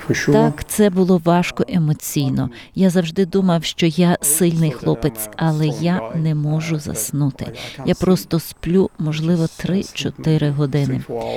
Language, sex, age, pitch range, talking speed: Ukrainian, female, 30-49, 160-195 Hz, 120 wpm